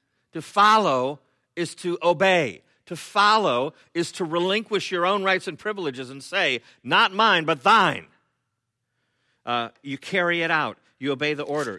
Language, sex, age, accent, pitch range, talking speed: English, male, 50-69, American, 120-160 Hz, 155 wpm